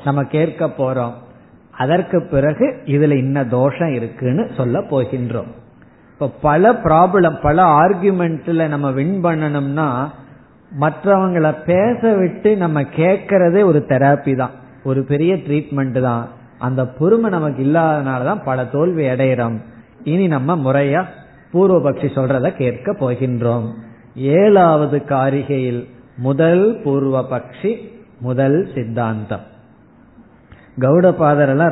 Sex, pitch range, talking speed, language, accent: male, 130-175 Hz, 105 wpm, Tamil, native